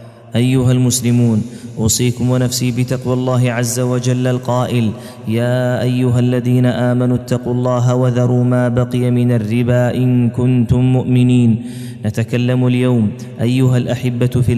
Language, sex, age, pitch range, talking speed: Arabic, male, 30-49, 120-125 Hz, 115 wpm